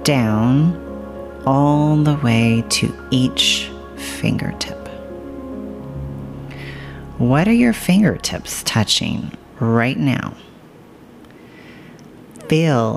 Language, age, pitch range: English, 40-59, 110-150 Hz